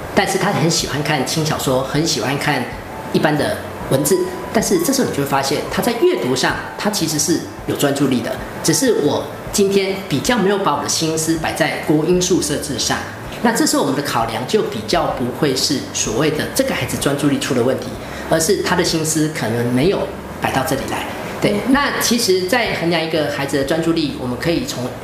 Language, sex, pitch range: Chinese, female, 140-210 Hz